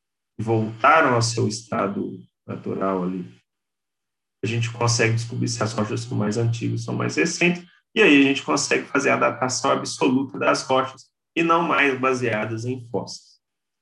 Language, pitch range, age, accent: Portuguese, 115-150 Hz, 40-59, Brazilian